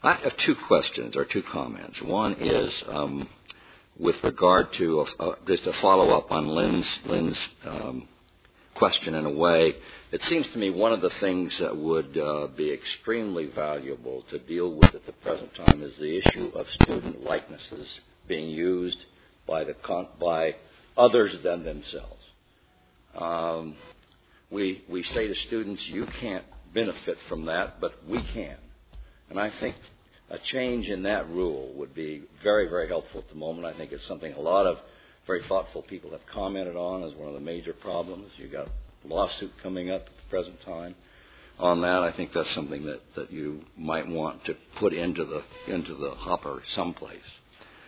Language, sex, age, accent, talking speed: English, male, 60-79, American, 175 wpm